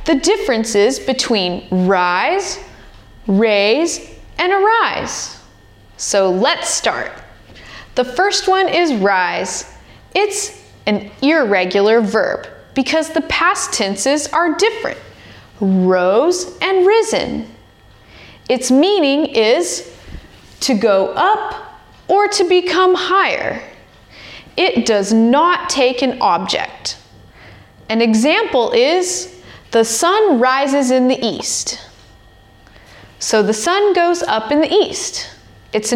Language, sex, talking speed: Russian, female, 105 wpm